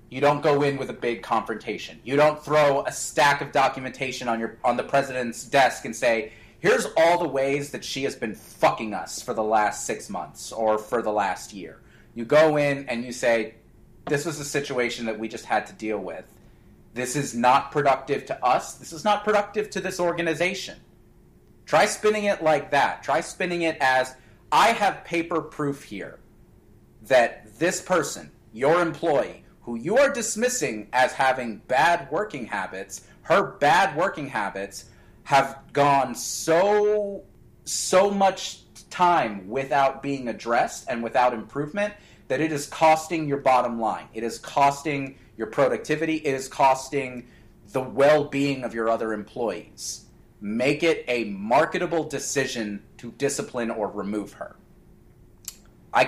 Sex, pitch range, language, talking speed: male, 120-155 Hz, English, 160 wpm